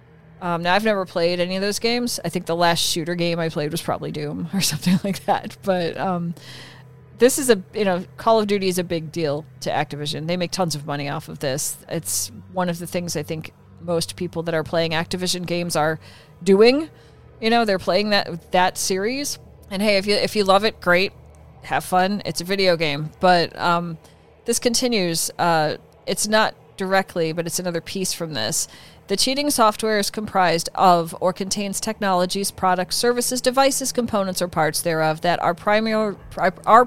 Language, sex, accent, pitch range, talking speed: English, female, American, 165-205 Hz, 195 wpm